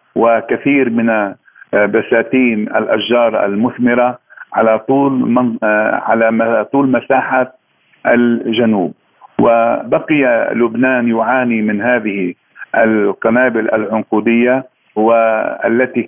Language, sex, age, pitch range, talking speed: Arabic, male, 50-69, 110-130 Hz, 75 wpm